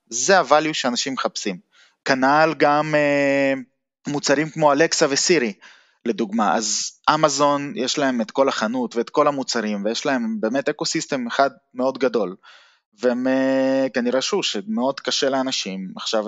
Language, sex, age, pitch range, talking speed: Hebrew, male, 20-39, 125-160 Hz, 135 wpm